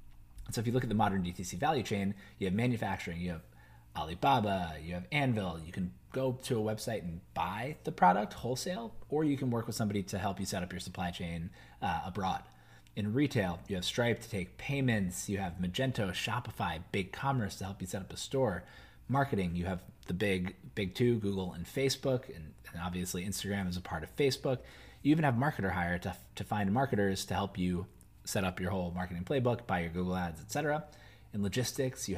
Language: English